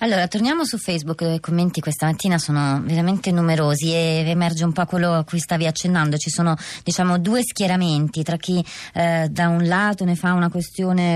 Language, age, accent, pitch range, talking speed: Italian, 30-49, native, 145-180 Hz, 190 wpm